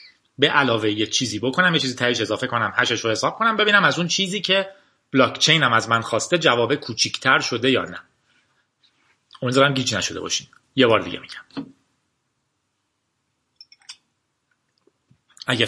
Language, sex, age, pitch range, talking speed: Persian, male, 30-49, 115-165 Hz, 145 wpm